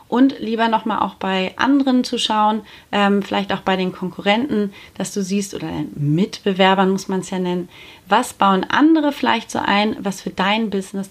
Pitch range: 195-255 Hz